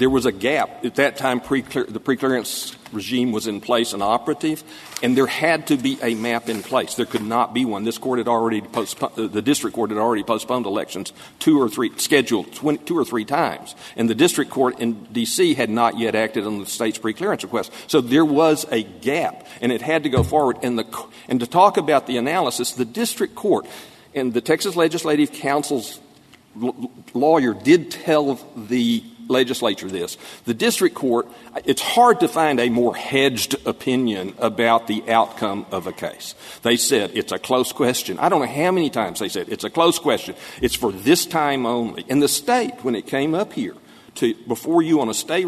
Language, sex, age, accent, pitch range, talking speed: English, male, 50-69, American, 115-160 Hz, 205 wpm